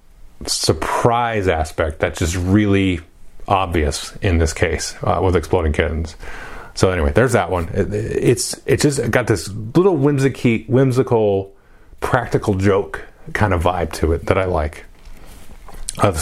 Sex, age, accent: male, 30-49, American